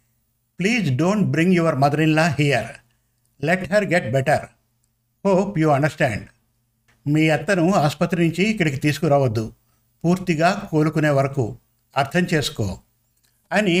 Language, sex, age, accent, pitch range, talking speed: Telugu, male, 50-69, native, 120-175 Hz, 115 wpm